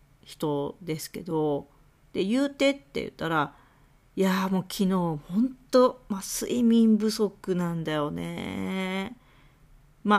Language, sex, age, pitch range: Japanese, female, 40-59, 155-230 Hz